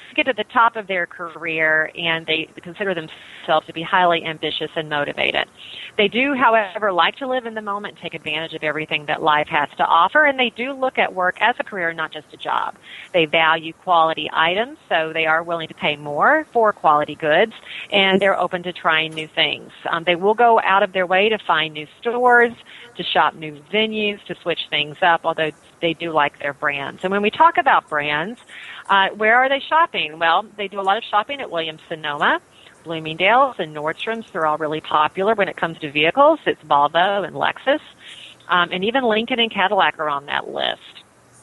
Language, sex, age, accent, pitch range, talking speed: English, female, 40-59, American, 160-220 Hz, 205 wpm